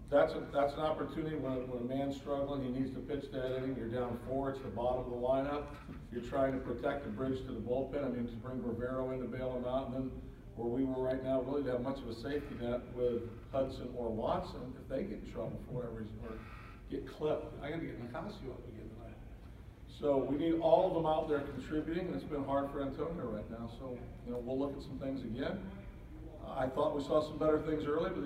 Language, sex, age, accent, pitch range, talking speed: English, male, 50-69, American, 125-145 Hz, 240 wpm